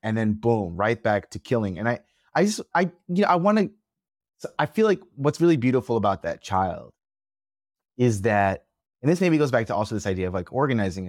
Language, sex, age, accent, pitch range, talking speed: English, male, 30-49, American, 100-130 Hz, 215 wpm